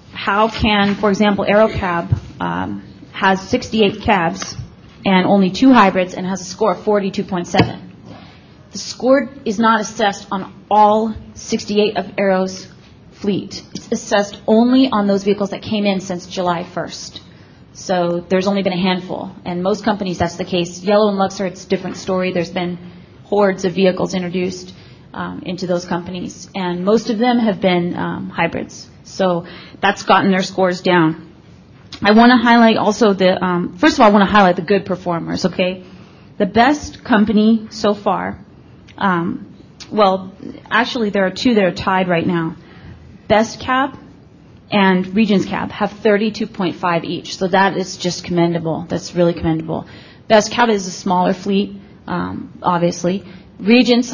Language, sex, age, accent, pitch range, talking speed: English, female, 30-49, American, 180-215 Hz, 160 wpm